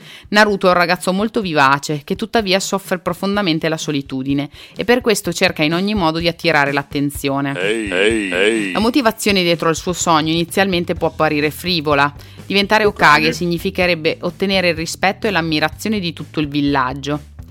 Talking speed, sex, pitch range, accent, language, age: 150 wpm, female, 150-200 Hz, native, Italian, 30-49